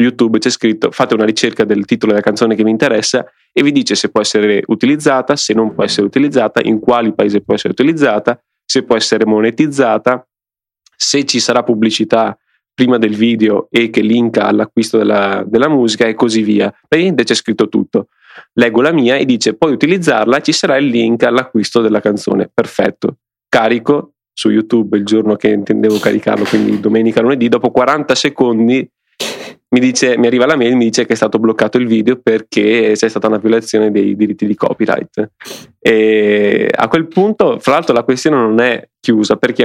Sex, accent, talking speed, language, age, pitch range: male, native, 185 wpm, Italian, 20-39, 110-125 Hz